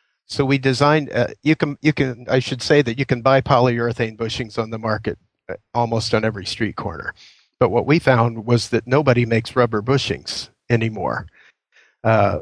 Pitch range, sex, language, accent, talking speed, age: 110-120 Hz, male, English, American, 180 wpm, 40-59